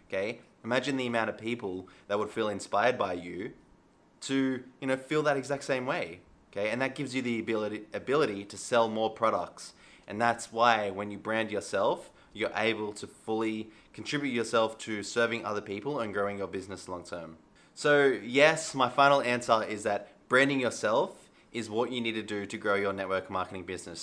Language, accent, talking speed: English, Australian, 190 wpm